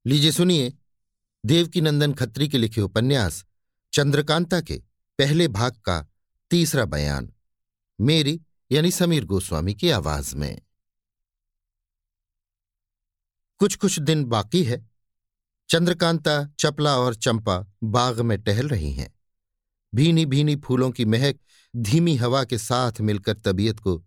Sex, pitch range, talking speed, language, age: male, 100-140 Hz, 120 wpm, Hindi, 50-69